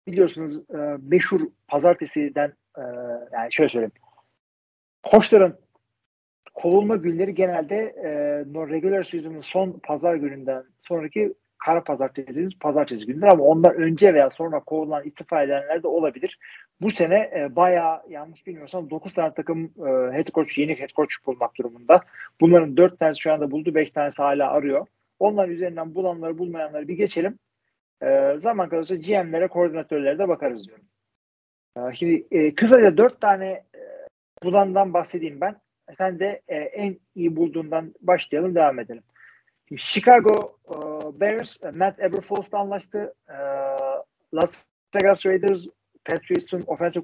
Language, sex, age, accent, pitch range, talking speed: Turkish, male, 40-59, native, 150-195 Hz, 140 wpm